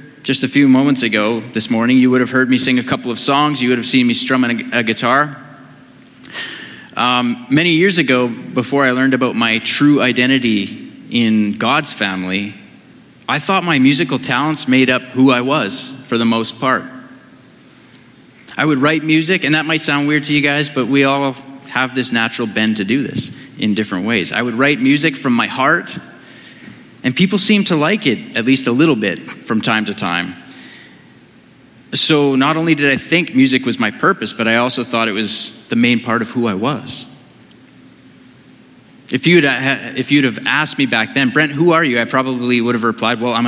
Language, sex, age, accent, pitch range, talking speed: English, male, 20-39, American, 120-150 Hz, 200 wpm